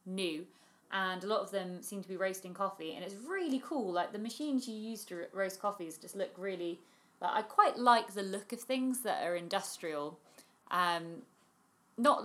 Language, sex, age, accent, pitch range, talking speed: English, female, 30-49, British, 180-245 Hz, 190 wpm